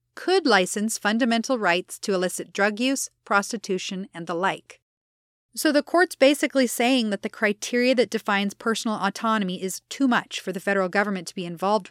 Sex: female